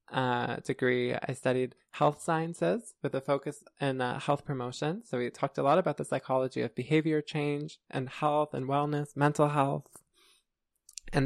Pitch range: 130-155 Hz